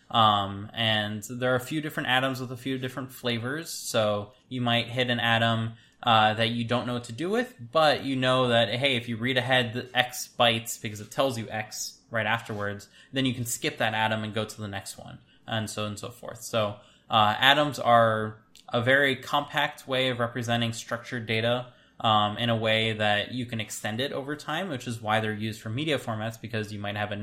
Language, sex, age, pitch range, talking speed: English, male, 20-39, 110-125 Hz, 220 wpm